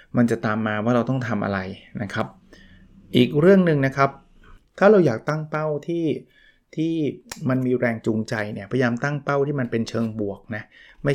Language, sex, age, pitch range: Thai, male, 20-39, 120-150 Hz